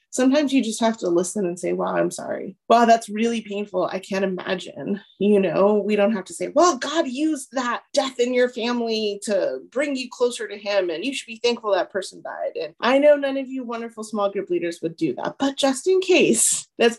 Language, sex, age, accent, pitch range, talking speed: English, female, 30-49, American, 195-245 Hz, 230 wpm